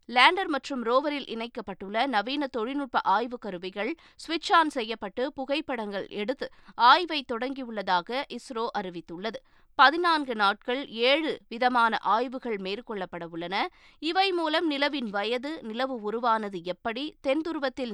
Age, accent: 20-39, native